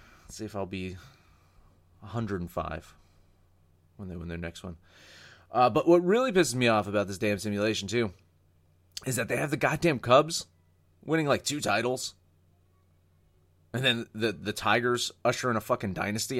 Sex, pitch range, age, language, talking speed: male, 85-115 Hz, 30-49, English, 165 wpm